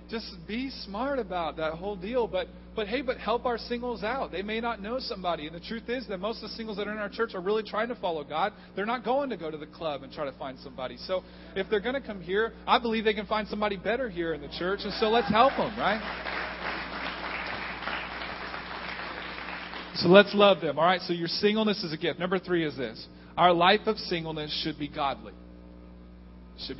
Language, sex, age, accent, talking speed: English, male, 40-59, American, 225 wpm